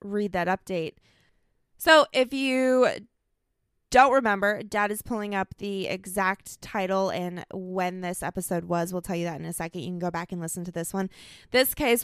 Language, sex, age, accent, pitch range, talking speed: English, female, 20-39, American, 180-215 Hz, 190 wpm